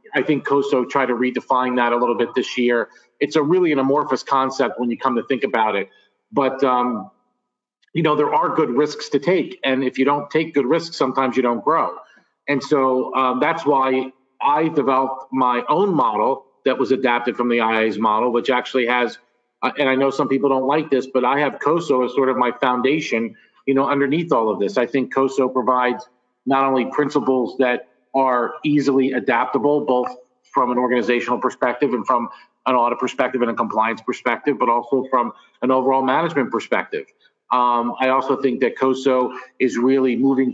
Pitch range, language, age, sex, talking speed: 125-140 Hz, English, 40-59, male, 195 wpm